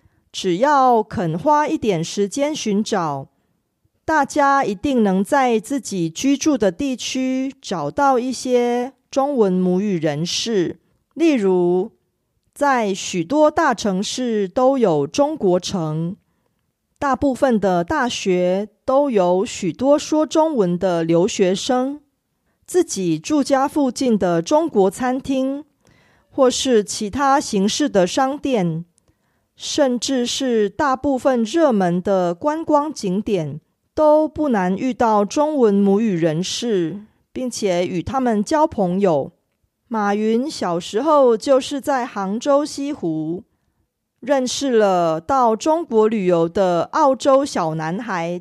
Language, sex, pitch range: Korean, female, 190-275 Hz